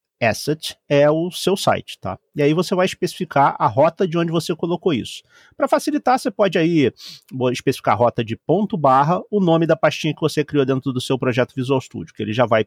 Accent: Brazilian